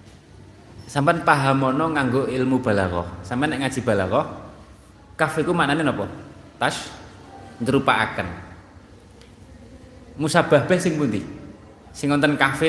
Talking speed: 105 wpm